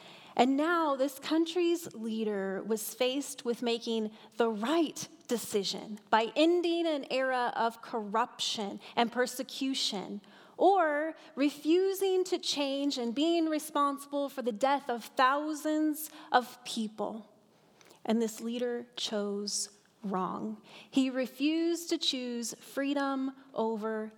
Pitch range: 210-275 Hz